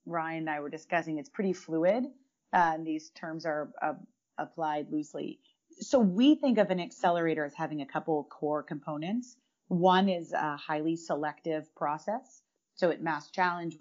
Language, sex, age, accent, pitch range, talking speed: English, female, 30-49, American, 150-180 Hz, 165 wpm